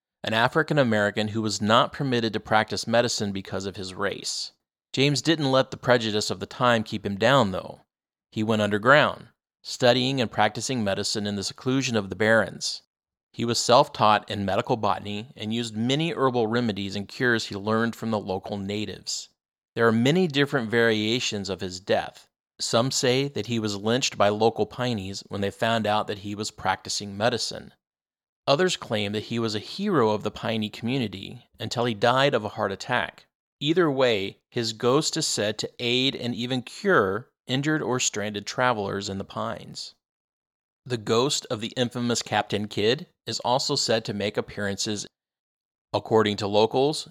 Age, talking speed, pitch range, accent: 30-49, 170 wpm, 105-125 Hz, American